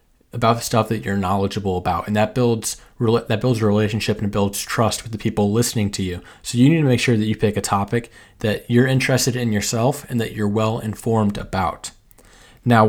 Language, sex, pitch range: English, male, 105-120 Hz